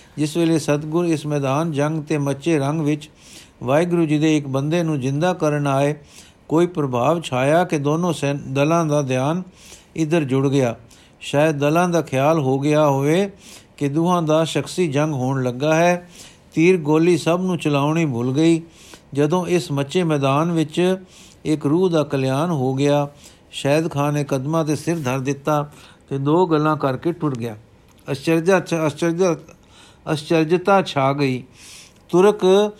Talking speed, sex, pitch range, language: 155 wpm, male, 140-170 Hz, Punjabi